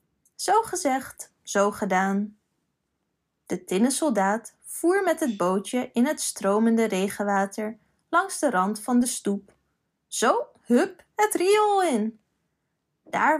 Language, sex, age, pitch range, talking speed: Dutch, female, 20-39, 205-315 Hz, 120 wpm